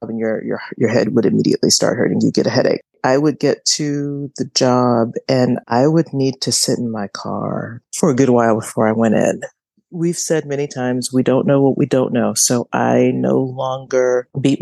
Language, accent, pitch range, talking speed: English, American, 120-150 Hz, 215 wpm